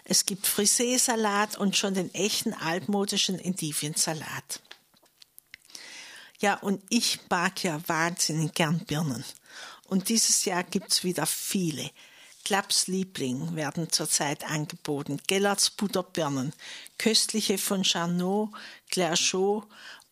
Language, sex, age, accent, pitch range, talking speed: German, female, 60-79, Austrian, 175-220 Hz, 105 wpm